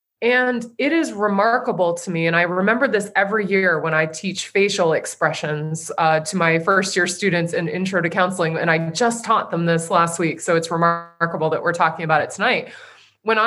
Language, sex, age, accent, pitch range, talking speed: English, female, 20-39, American, 170-210 Hz, 195 wpm